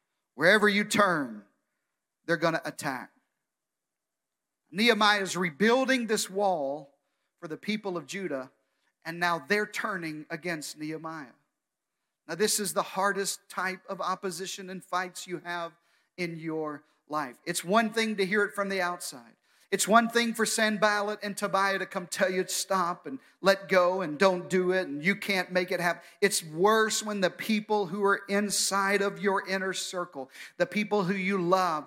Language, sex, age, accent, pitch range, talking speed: English, male, 40-59, American, 175-210 Hz, 170 wpm